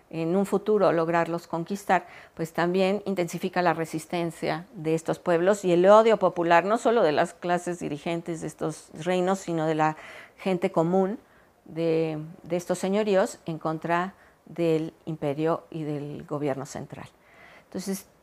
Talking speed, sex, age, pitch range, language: 145 wpm, female, 40-59, 170-205 Hz, Spanish